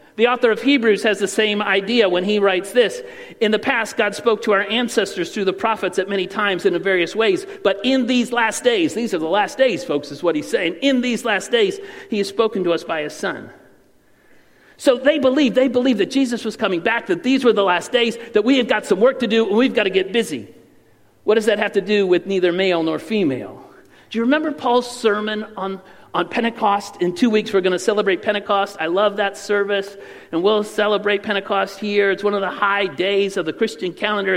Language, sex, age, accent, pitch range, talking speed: English, male, 40-59, American, 200-255 Hz, 230 wpm